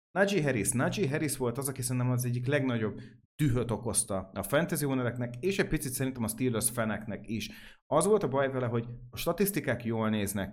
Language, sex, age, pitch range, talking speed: Hungarian, male, 30-49, 115-130 Hz, 195 wpm